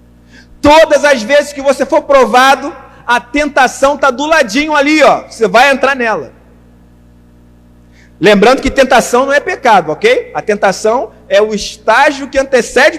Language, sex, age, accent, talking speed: Portuguese, male, 40-59, Brazilian, 150 wpm